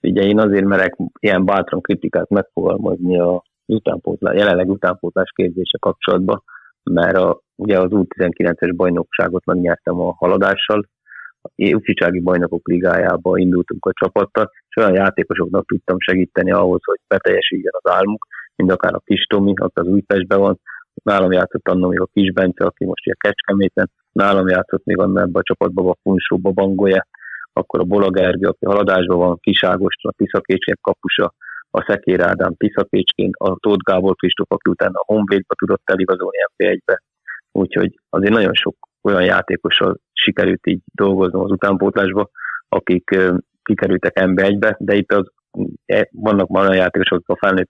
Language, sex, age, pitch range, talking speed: Hungarian, male, 30-49, 90-100 Hz, 145 wpm